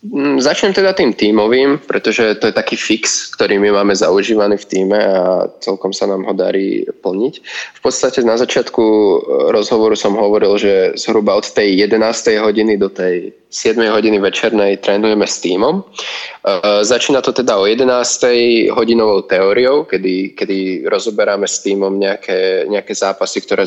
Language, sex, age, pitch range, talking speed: Slovak, male, 20-39, 100-125 Hz, 150 wpm